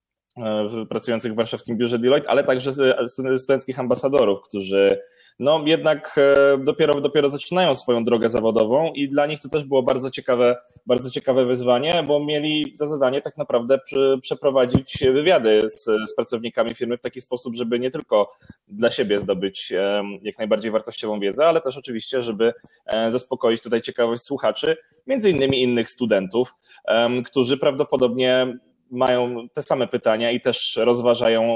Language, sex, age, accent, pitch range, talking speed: Polish, male, 20-39, native, 115-140 Hz, 140 wpm